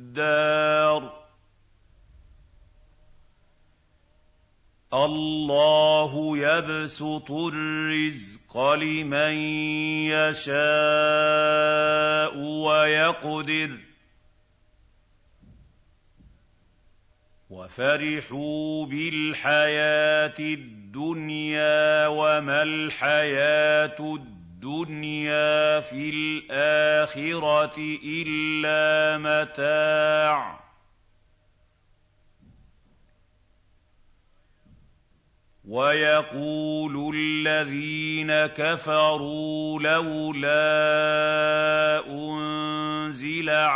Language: Arabic